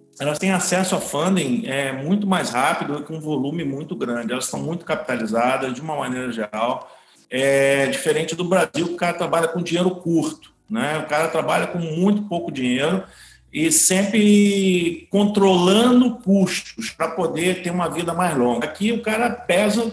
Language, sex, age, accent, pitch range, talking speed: Portuguese, male, 50-69, Brazilian, 145-195 Hz, 170 wpm